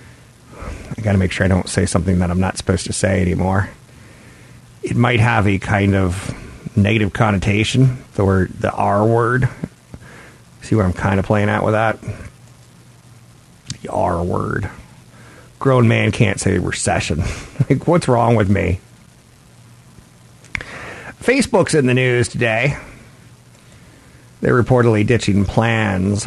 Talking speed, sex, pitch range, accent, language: 135 wpm, male, 95-115 Hz, American, English